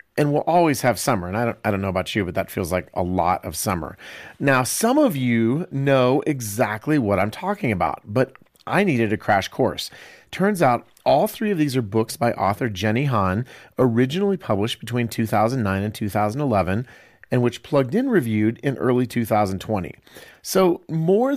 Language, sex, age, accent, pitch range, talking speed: English, male, 40-59, American, 105-145 Hz, 180 wpm